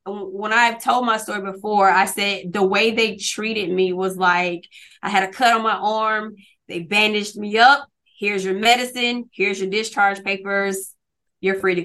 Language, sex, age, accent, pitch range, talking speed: English, female, 20-39, American, 190-215 Hz, 180 wpm